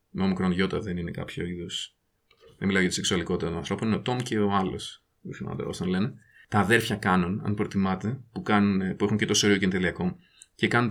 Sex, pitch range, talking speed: male, 100-125 Hz, 210 wpm